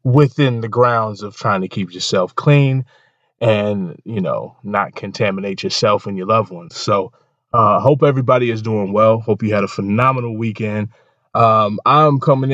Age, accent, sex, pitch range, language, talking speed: 20-39, American, male, 110-145 Hz, English, 165 wpm